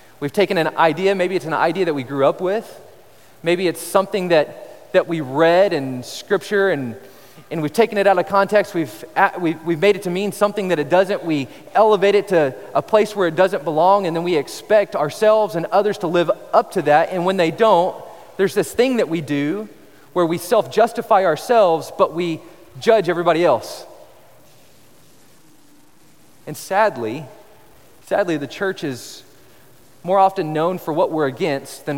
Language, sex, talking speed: English, male, 180 wpm